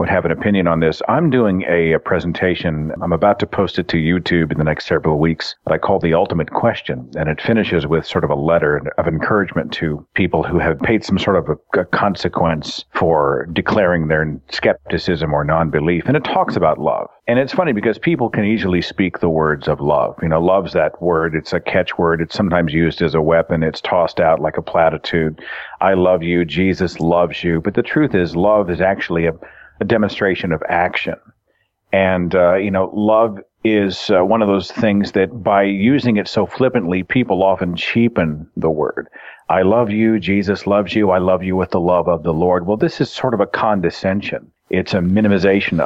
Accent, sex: American, male